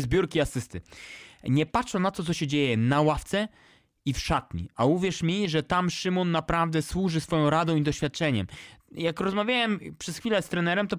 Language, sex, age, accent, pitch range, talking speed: English, male, 20-39, Polish, 150-205 Hz, 180 wpm